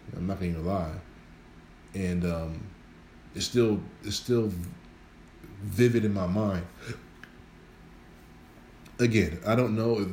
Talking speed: 115 wpm